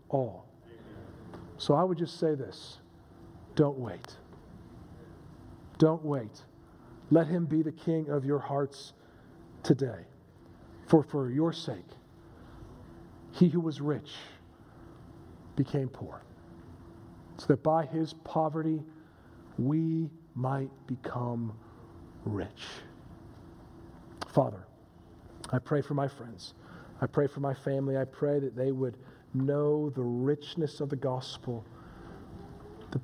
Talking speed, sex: 115 wpm, male